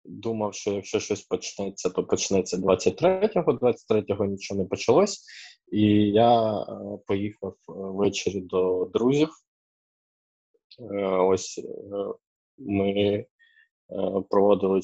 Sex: male